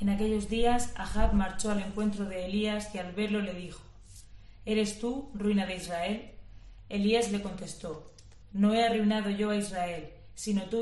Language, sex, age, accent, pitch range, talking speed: Spanish, female, 20-39, Spanish, 175-215 Hz, 165 wpm